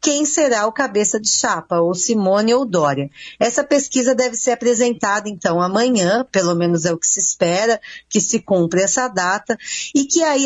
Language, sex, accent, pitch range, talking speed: Portuguese, female, Brazilian, 185-255 Hz, 185 wpm